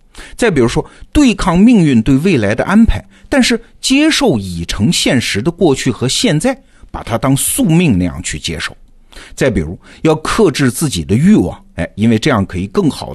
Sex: male